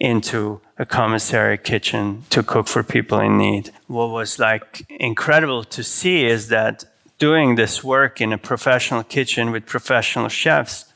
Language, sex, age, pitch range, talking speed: English, male, 30-49, 110-125 Hz, 155 wpm